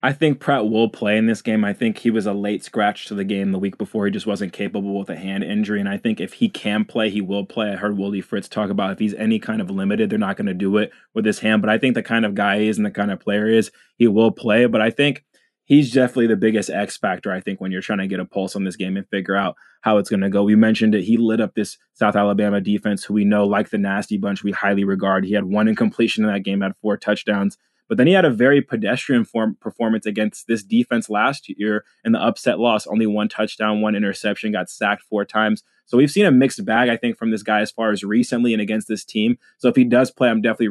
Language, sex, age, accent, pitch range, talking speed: English, male, 20-39, American, 105-120 Hz, 285 wpm